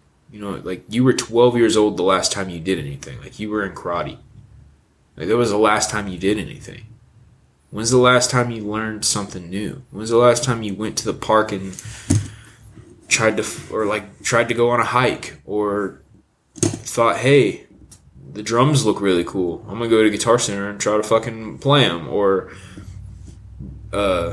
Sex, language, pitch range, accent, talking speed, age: male, English, 105-135 Hz, American, 190 wpm, 20-39